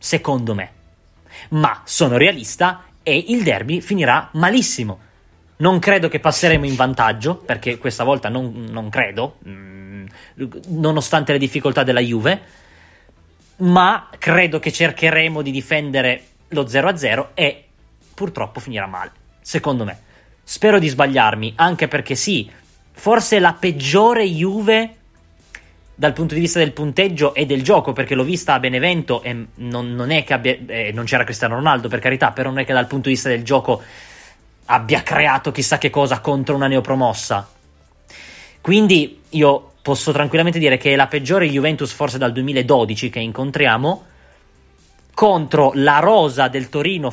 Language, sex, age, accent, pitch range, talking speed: Italian, male, 20-39, native, 120-160 Hz, 150 wpm